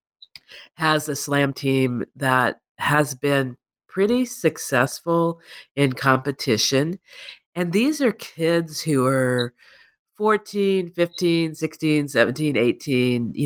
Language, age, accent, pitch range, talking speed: English, 50-69, American, 140-180 Hz, 105 wpm